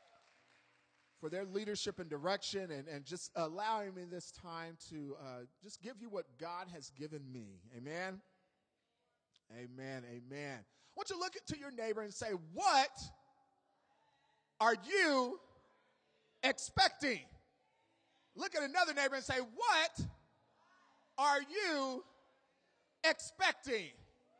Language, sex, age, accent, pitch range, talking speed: English, male, 30-49, American, 215-325 Hz, 115 wpm